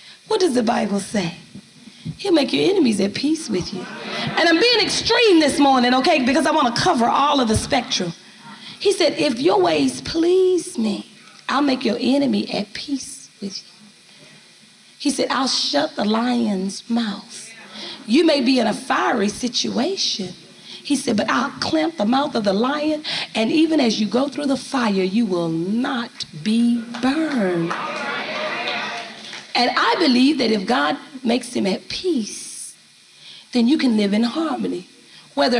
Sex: female